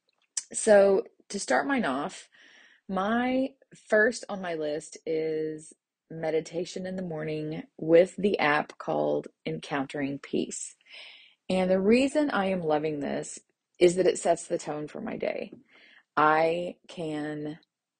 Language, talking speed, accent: English, 130 wpm, American